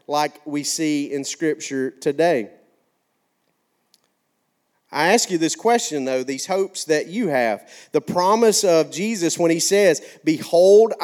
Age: 40-59